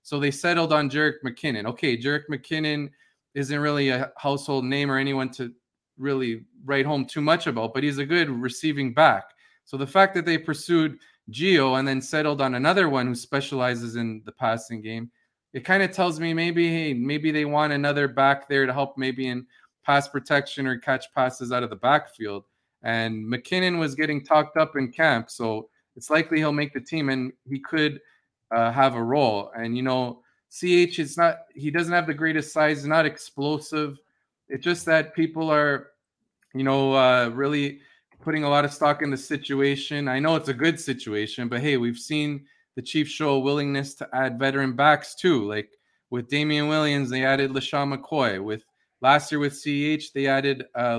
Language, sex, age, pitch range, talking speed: English, male, 20-39, 130-150 Hz, 195 wpm